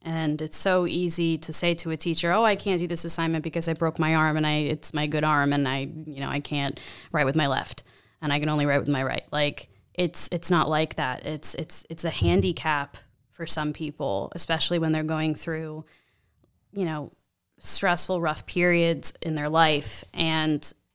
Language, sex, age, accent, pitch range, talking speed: English, female, 20-39, American, 150-170 Hz, 200 wpm